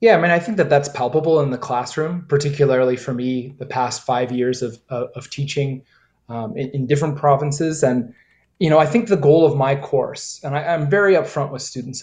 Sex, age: male, 20-39